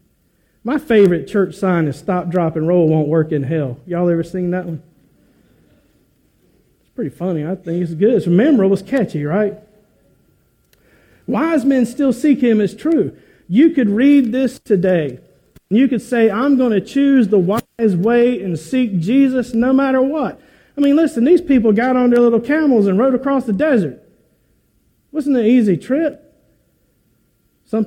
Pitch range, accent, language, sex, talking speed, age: 175-245 Hz, American, English, male, 170 wpm, 50-69